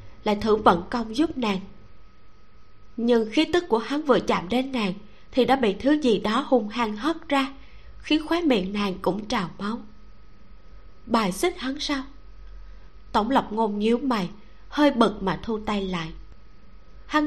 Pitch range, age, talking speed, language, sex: 190-255 Hz, 20-39, 165 wpm, Vietnamese, female